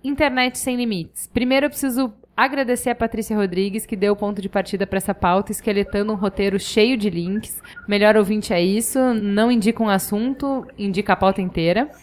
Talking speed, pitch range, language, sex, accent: 185 wpm, 200-245 Hz, Portuguese, female, Brazilian